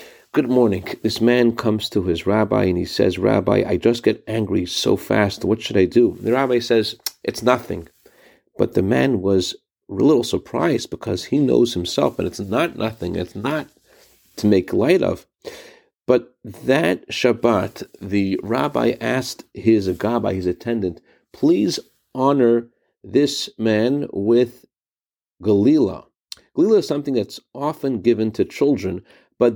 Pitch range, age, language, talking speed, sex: 100-135 Hz, 50-69, English, 150 wpm, male